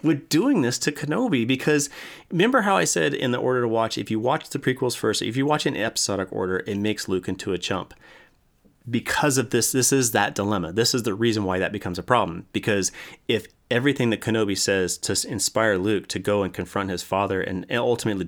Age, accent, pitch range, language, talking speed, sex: 30-49, American, 95-120 Hz, English, 215 wpm, male